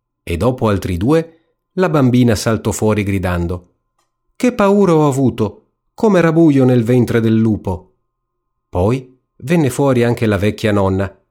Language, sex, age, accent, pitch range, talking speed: Italian, male, 40-59, native, 95-130 Hz, 140 wpm